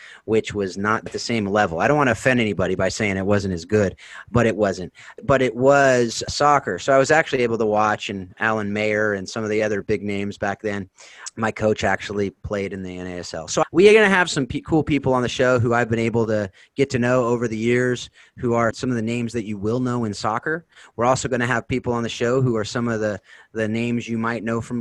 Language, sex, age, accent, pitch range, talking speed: English, male, 30-49, American, 100-120 Hz, 255 wpm